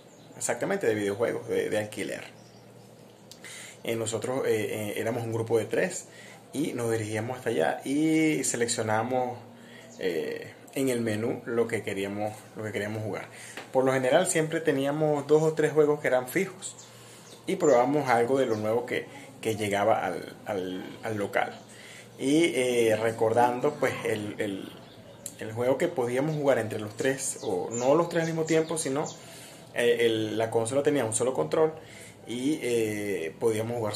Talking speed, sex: 160 wpm, male